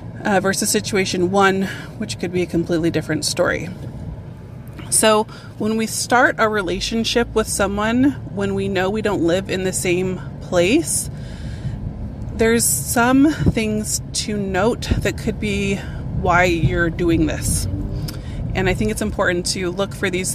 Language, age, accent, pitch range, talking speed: English, 30-49, American, 145-200 Hz, 145 wpm